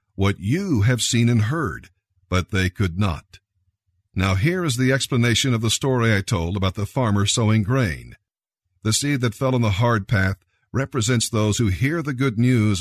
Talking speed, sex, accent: 185 wpm, male, American